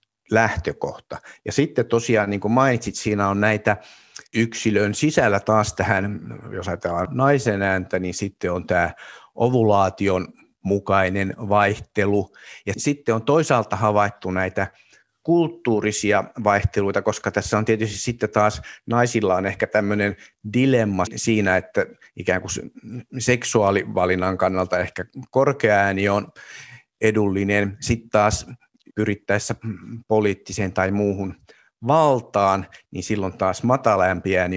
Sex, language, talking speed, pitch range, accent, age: male, Finnish, 115 wpm, 95-115 Hz, native, 50-69